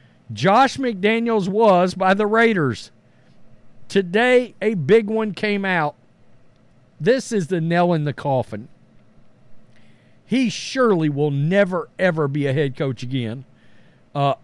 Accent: American